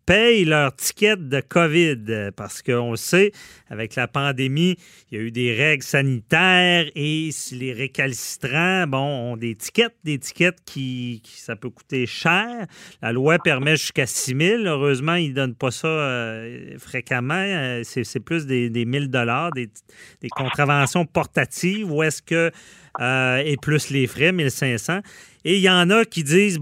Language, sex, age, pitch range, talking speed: French, male, 40-59, 130-175 Hz, 170 wpm